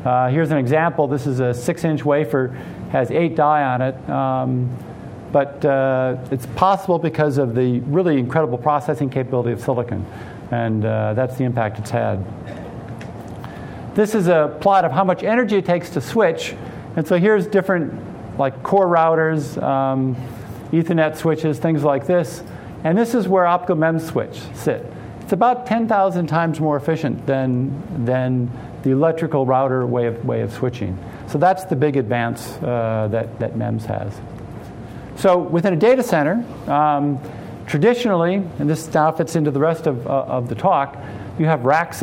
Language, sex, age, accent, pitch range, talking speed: English, male, 50-69, American, 125-165 Hz, 165 wpm